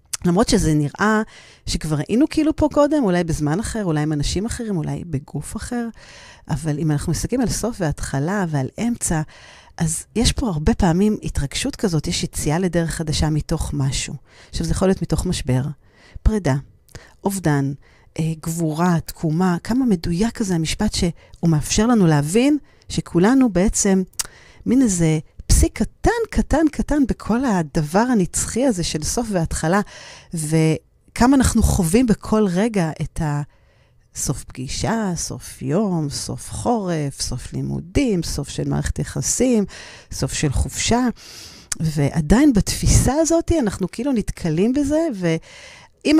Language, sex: Hebrew, female